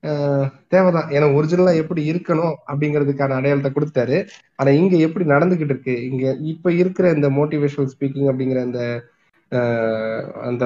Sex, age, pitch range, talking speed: male, 20-39, 125-155 Hz, 125 wpm